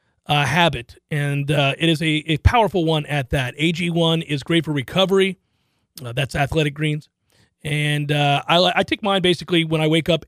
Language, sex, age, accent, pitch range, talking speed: English, male, 40-59, American, 155-200 Hz, 185 wpm